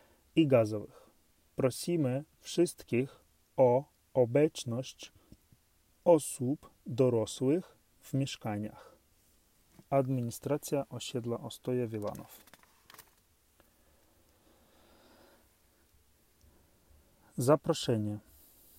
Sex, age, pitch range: male, 30-49, 115-135 Hz